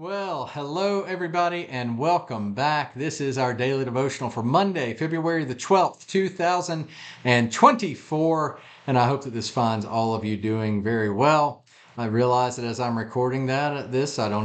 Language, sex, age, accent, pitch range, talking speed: English, male, 40-59, American, 110-150 Hz, 165 wpm